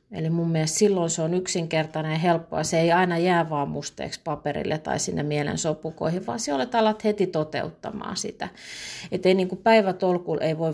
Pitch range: 150-185 Hz